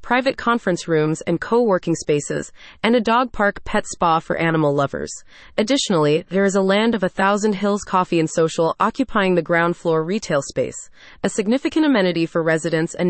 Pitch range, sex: 170-225 Hz, female